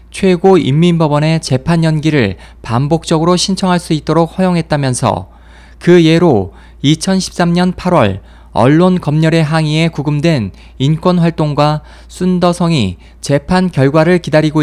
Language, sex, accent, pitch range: Korean, male, native, 110-175 Hz